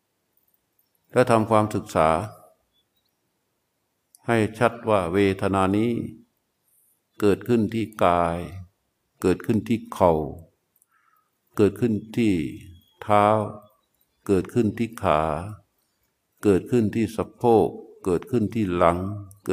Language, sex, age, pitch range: Thai, male, 60-79, 95-110 Hz